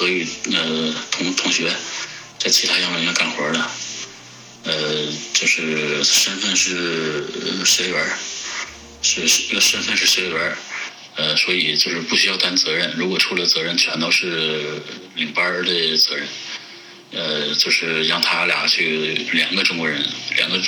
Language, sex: Chinese, male